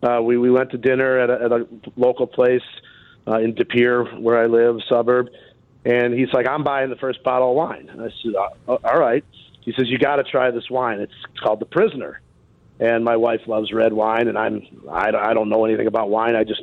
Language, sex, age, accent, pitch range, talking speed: English, male, 40-59, American, 120-140 Hz, 225 wpm